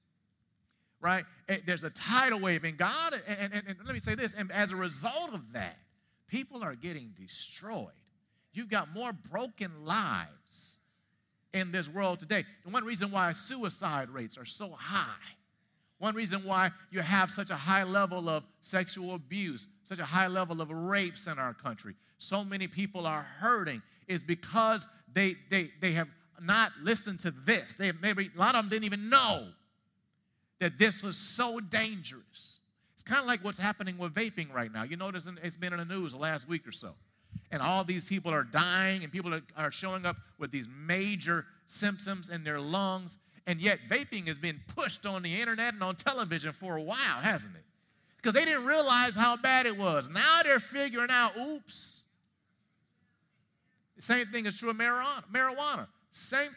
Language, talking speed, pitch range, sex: English, 185 wpm, 170-220 Hz, male